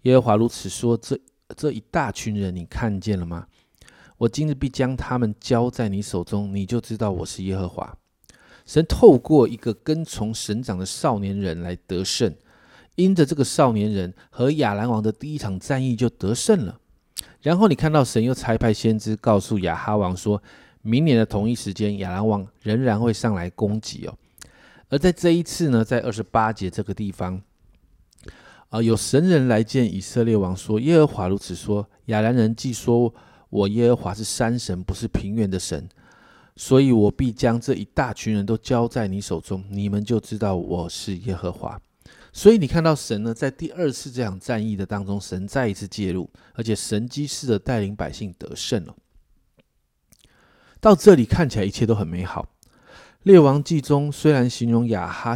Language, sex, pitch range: Chinese, male, 100-125 Hz